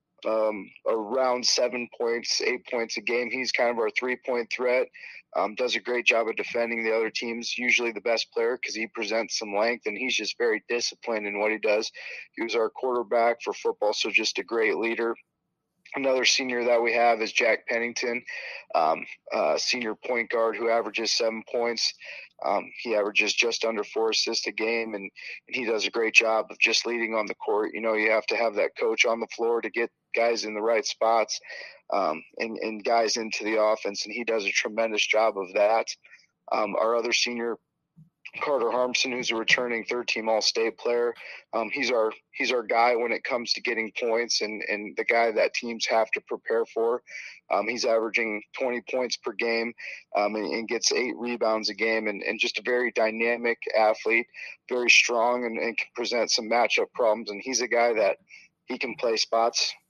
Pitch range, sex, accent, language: 110-125 Hz, male, American, English